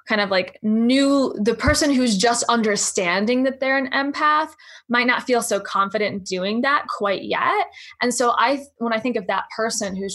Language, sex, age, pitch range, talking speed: English, female, 20-39, 200-260 Hz, 195 wpm